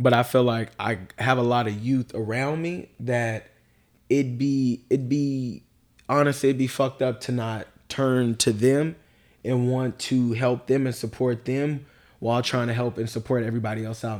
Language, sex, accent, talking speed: English, male, American, 180 wpm